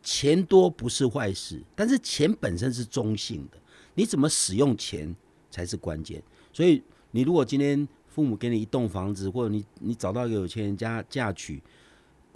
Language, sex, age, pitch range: Chinese, male, 50-69, 105-160 Hz